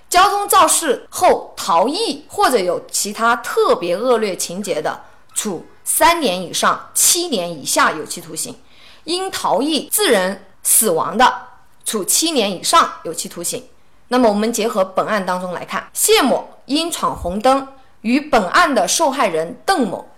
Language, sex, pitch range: Chinese, female, 205-325 Hz